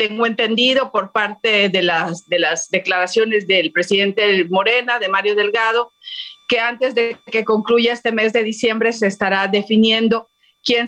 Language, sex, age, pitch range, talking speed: Spanish, female, 40-59, 190-245 Hz, 155 wpm